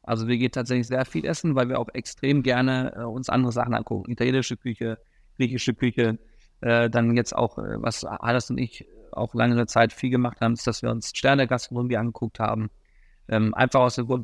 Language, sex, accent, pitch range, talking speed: German, male, German, 120-135 Hz, 205 wpm